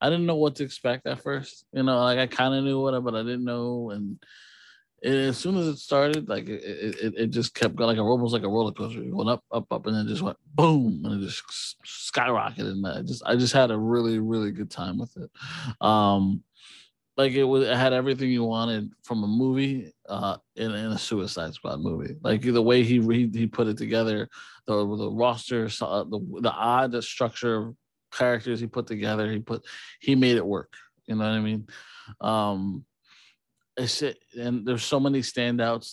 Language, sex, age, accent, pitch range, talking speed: English, male, 20-39, American, 110-130 Hz, 210 wpm